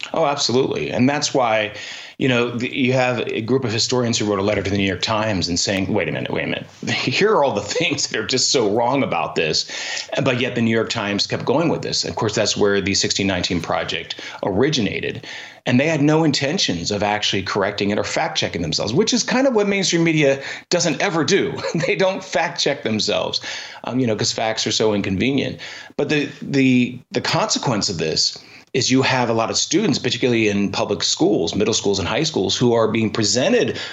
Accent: American